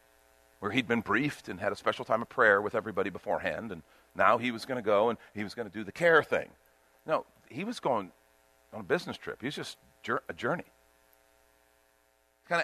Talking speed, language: 210 wpm, English